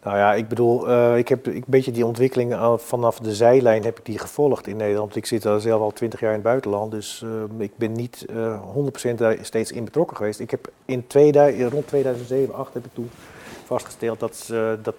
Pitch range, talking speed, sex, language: 110-130 Hz, 230 wpm, male, Dutch